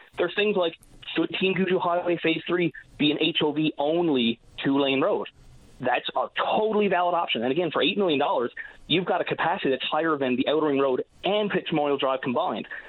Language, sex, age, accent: English, male, 30-49, American